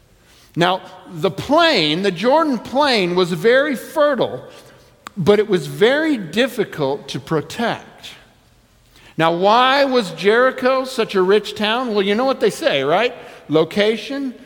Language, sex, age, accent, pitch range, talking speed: English, male, 50-69, American, 150-235 Hz, 135 wpm